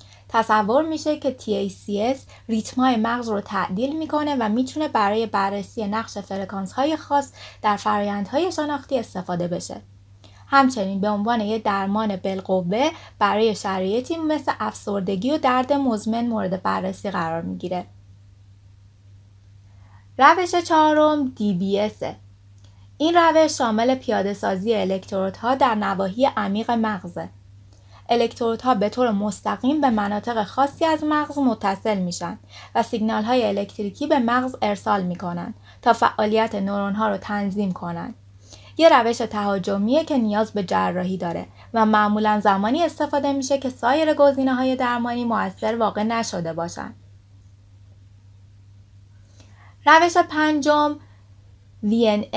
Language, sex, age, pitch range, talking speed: Persian, female, 20-39, 180-255 Hz, 120 wpm